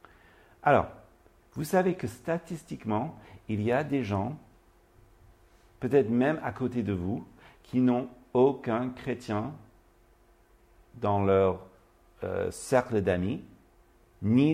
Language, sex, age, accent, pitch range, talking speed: French, male, 50-69, French, 100-145 Hz, 105 wpm